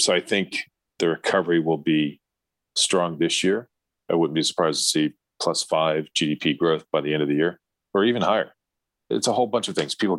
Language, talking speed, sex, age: English, 210 wpm, male, 40-59